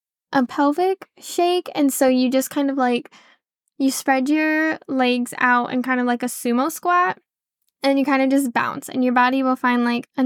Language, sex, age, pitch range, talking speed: English, female, 10-29, 250-285 Hz, 205 wpm